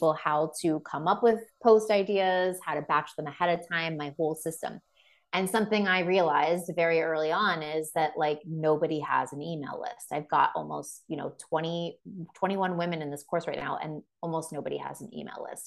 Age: 30-49